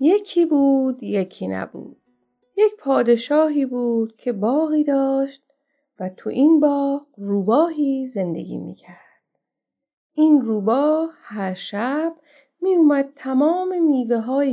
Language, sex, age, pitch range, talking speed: Persian, female, 30-49, 210-305 Hz, 100 wpm